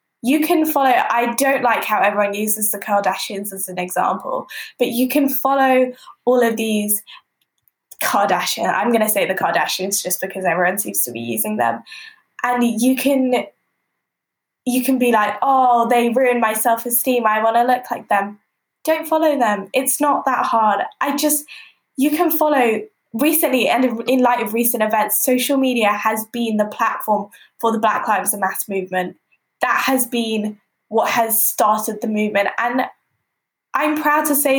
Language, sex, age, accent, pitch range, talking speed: English, female, 10-29, British, 215-275 Hz, 170 wpm